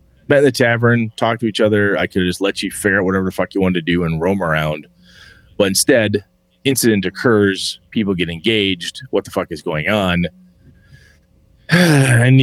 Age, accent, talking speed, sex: 30-49, American, 185 wpm, male